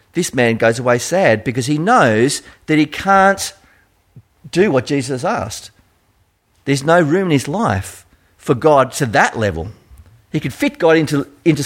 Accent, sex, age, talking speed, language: Australian, male, 50-69, 165 wpm, English